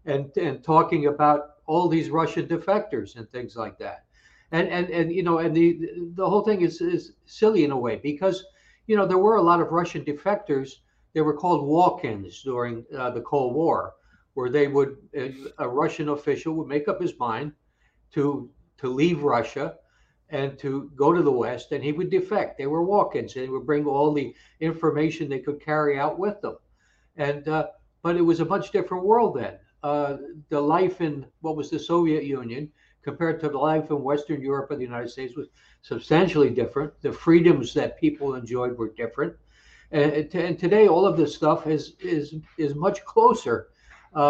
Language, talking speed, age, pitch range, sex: English, 190 wpm, 60-79, 145-170 Hz, male